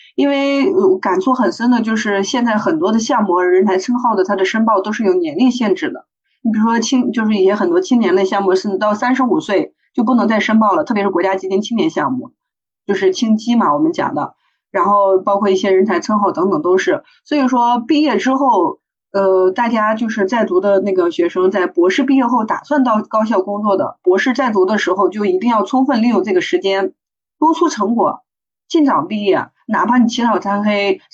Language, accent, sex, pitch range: Chinese, native, female, 195-275 Hz